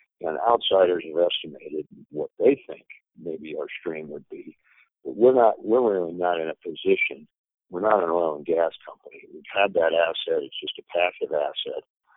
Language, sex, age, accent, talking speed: English, male, 60-79, American, 180 wpm